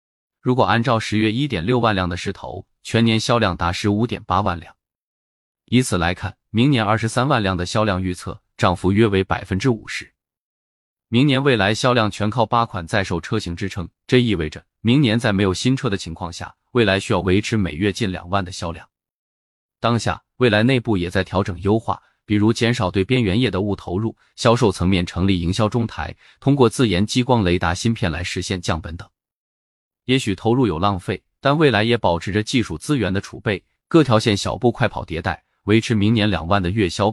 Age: 20-39